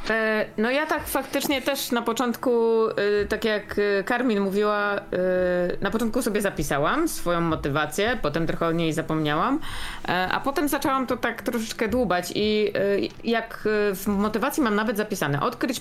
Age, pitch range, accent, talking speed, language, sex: 20-39, 195-245 Hz, native, 140 wpm, Polish, female